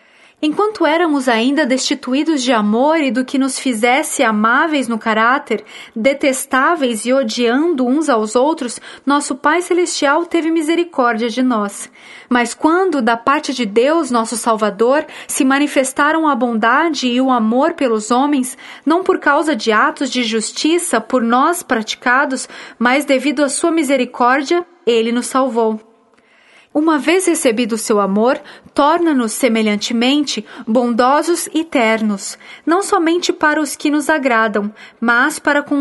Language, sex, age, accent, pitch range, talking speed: Portuguese, female, 20-39, Brazilian, 235-305 Hz, 140 wpm